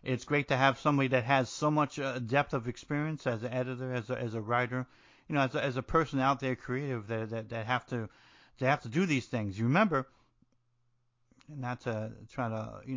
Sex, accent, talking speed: male, American, 225 wpm